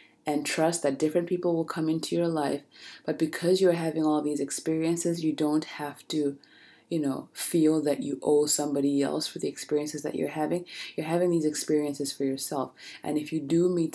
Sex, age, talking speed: female, 20-39, 200 wpm